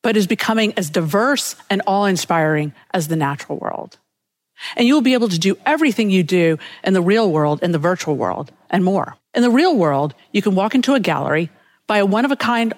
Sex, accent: female, American